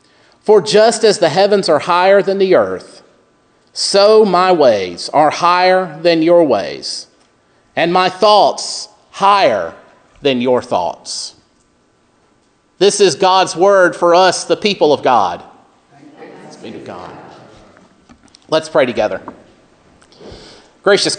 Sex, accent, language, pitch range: male, American, English, 150-185 Hz